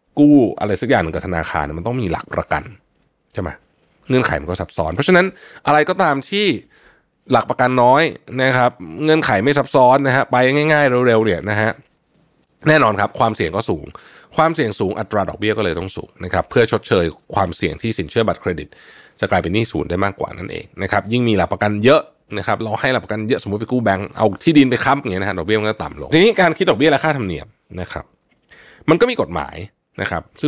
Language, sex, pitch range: Thai, male, 95-135 Hz